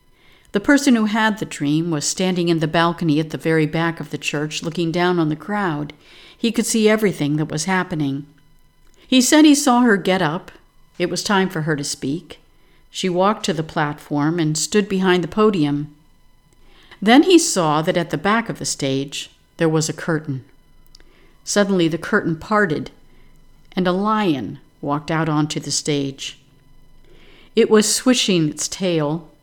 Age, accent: 50-69, American